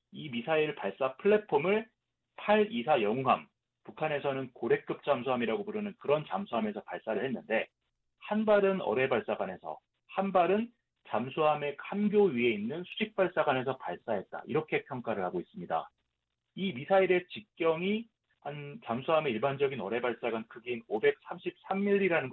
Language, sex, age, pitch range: Korean, male, 40-59, 125-195 Hz